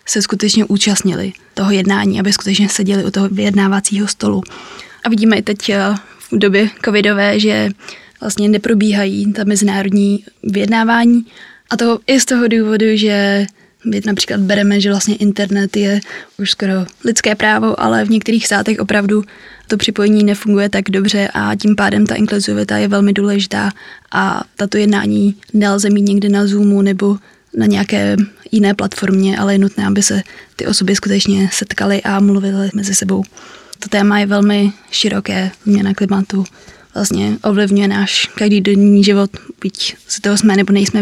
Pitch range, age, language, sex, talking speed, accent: 195-210 Hz, 20-39, Czech, female, 155 wpm, native